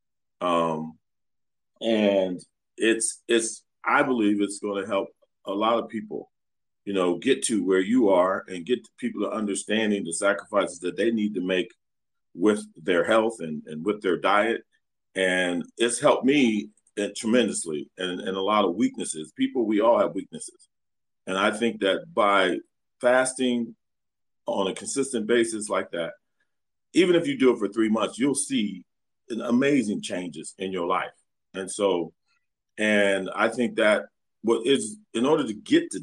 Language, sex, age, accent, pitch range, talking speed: English, male, 40-59, American, 95-120 Hz, 160 wpm